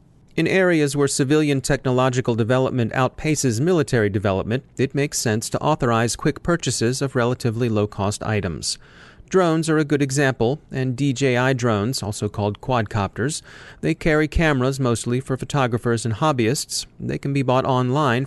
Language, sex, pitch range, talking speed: English, male, 115-140 Hz, 145 wpm